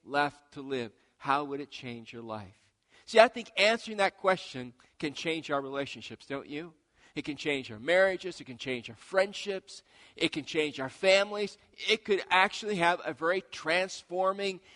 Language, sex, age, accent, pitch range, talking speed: English, male, 50-69, American, 125-180 Hz, 175 wpm